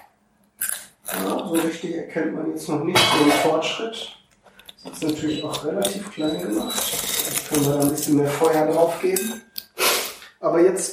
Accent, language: German, German